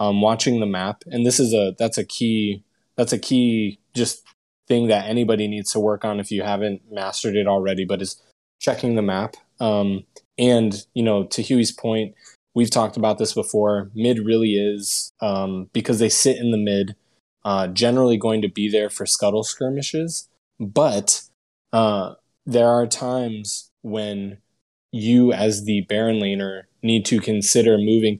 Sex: male